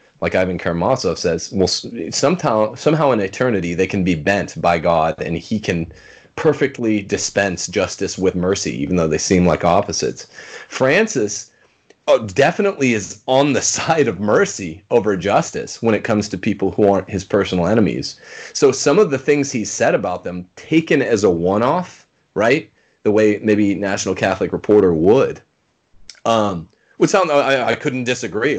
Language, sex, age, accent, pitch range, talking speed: English, male, 30-49, American, 95-125 Hz, 165 wpm